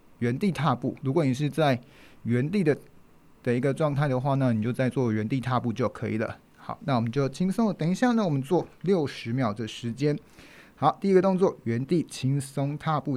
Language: Chinese